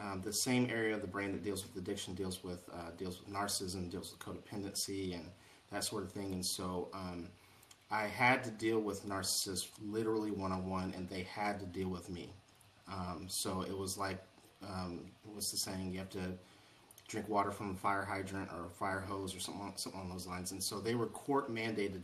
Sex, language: male, English